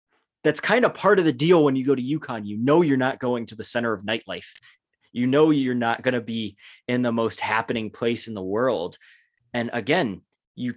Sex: male